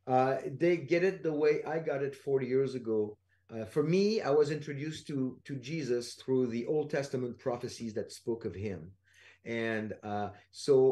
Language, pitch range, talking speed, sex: English, 120-155 Hz, 180 wpm, male